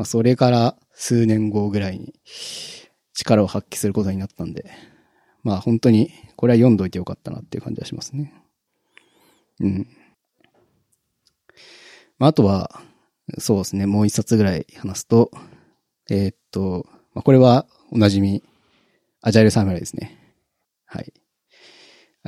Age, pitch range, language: 20-39, 100-125 Hz, Japanese